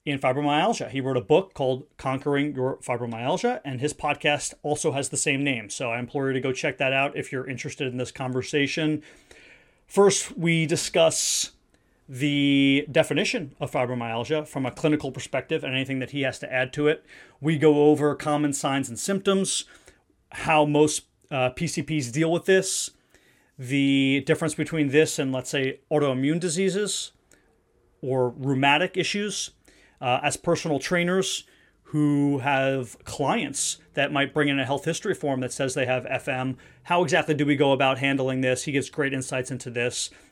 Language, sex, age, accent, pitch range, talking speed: English, male, 30-49, American, 130-155 Hz, 170 wpm